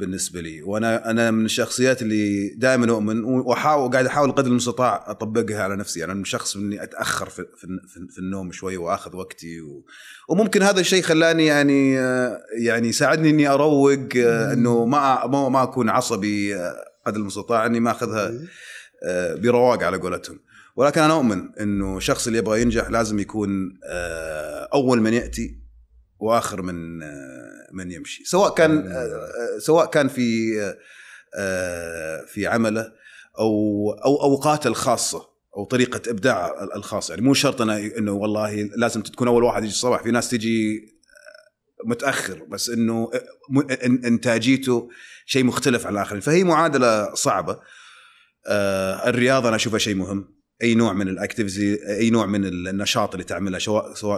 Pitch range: 100-130 Hz